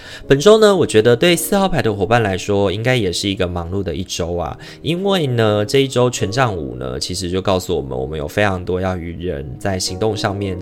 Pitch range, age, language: 90-125 Hz, 20-39, Chinese